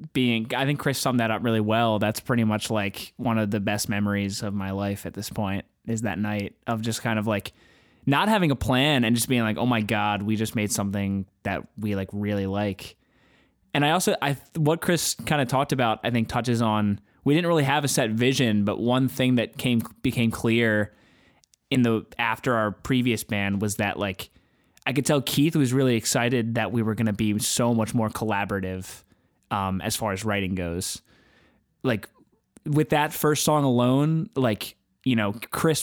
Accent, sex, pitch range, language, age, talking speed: American, male, 105-130 Hz, English, 20-39, 205 wpm